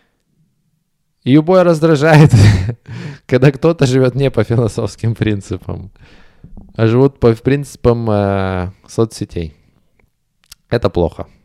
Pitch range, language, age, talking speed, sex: 100-150 Hz, Russian, 20-39, 90 wpm, male